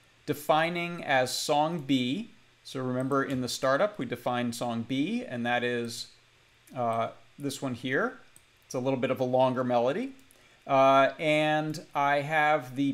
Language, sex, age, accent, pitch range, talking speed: English, male, 30-49, American, 115-140 Hz, 155 wpm